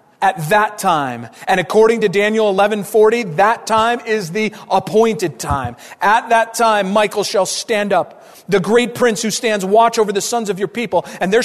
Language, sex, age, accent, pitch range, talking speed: English, male, 40-59, American, 160-215 Hz, 190 wpm